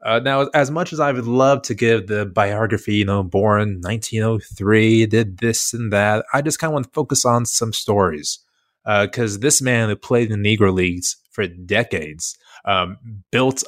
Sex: male